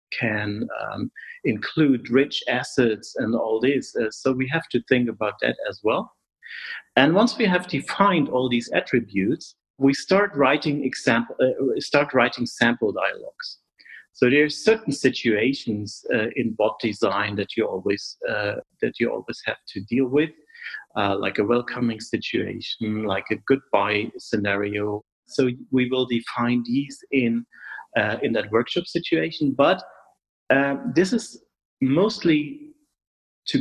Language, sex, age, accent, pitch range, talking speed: English, male, 40-59, German, 120-150 Hz, 145 wpm